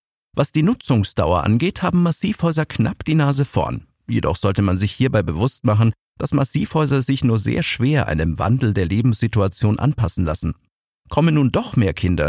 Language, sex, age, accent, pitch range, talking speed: German, male, 50-69, German, 100-140 Hz, 165 wpm